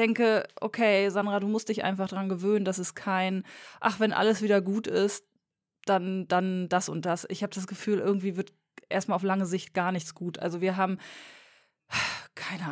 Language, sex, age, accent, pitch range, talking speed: German, female, 20-39, German, 170-205 Hz, 195 wpm